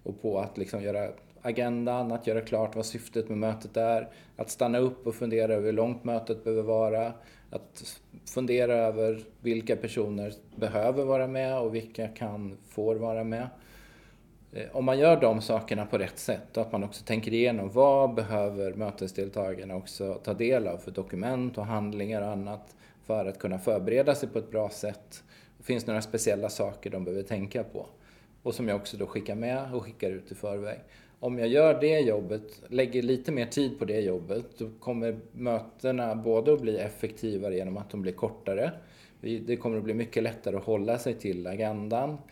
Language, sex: Swedish, male